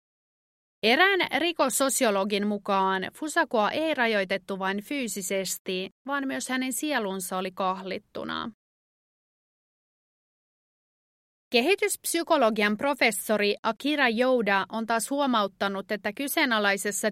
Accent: native